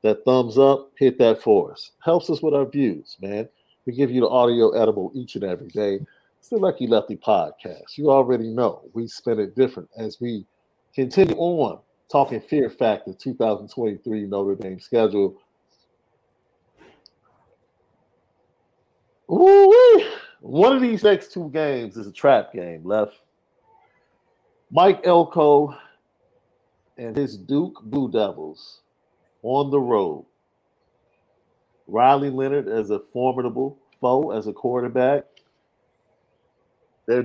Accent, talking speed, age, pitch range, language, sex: American, 125 wpm, 50-69, 115-160 Hz, English, male